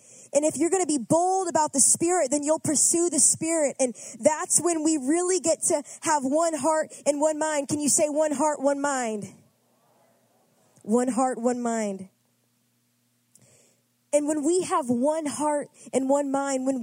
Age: 20-39